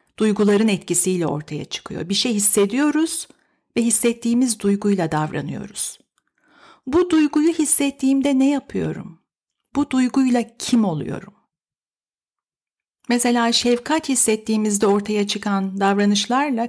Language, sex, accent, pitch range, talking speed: Turkish, female, native, 195-260 Hz, 95 wpm